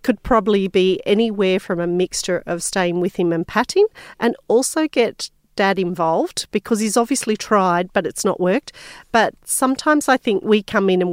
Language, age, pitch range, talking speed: English, 40-59, 180-230 Hz, 185 wpm